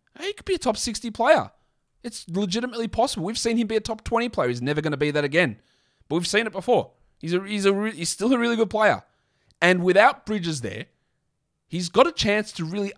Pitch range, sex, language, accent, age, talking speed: 125-195 Hz, male, English, Australian, 20-39, 230 wpm